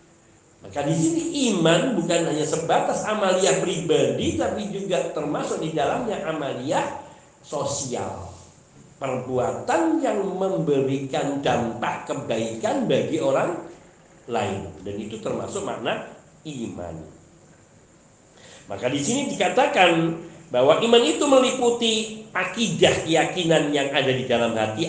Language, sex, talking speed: Indonesian, male, 105 wpm